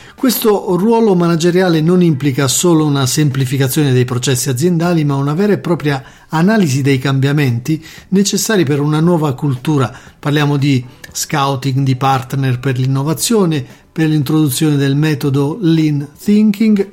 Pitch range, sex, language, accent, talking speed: 130-175 Hz, male, Italian, native, 130 wpm